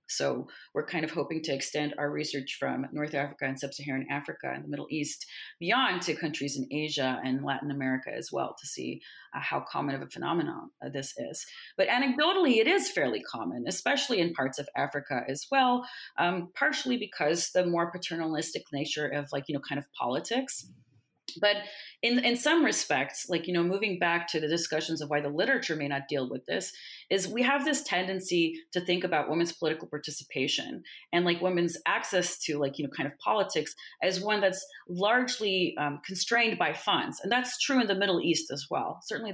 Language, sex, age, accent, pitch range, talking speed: English, female, 30-49, Canadian, 145-200 Hz, 195 wpm